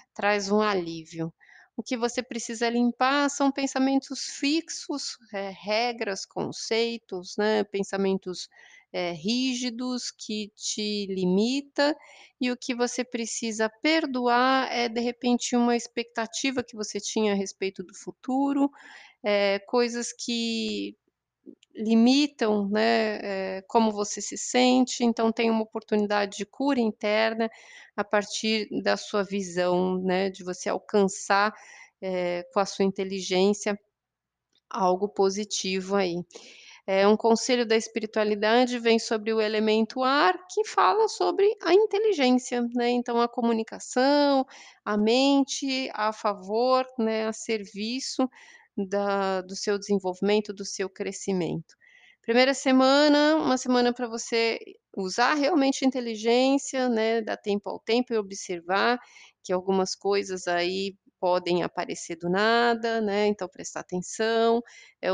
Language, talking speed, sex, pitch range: Portuguese, 125 wpm, female, 195-250 Hz